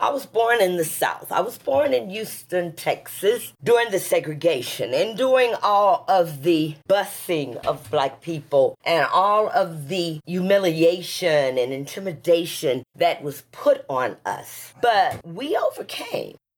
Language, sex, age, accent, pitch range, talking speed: English, female, 40-59, American, 165-230 Hz, 140 wpm